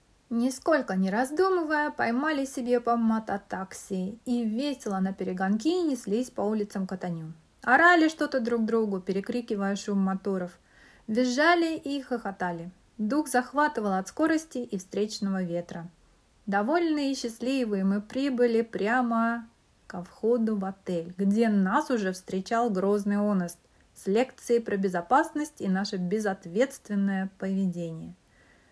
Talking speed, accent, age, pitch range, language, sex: 115 wpm, native, 30-49, 195-275 Hz, Russian, female